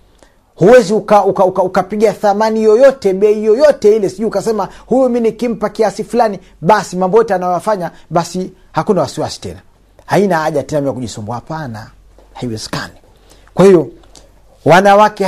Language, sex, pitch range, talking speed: Swahili, male, 110-160 Hz, 125 wpm